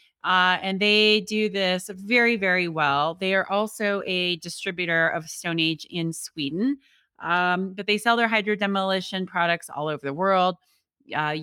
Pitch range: 160-210 Hz